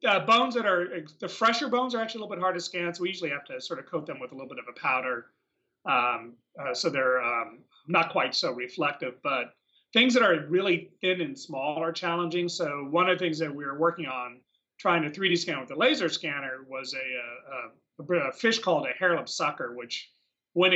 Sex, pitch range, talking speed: male, 135-180 Hz, 230 wpm